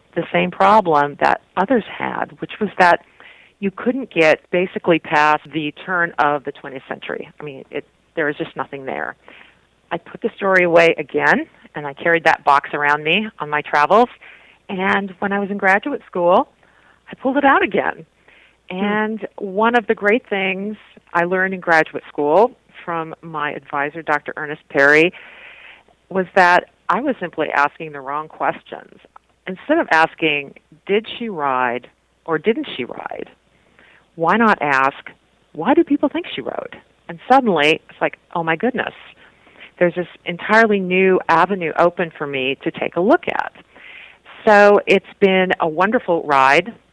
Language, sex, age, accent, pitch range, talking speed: English, female, 40-59, American, 160-215 Hz, 160 wpm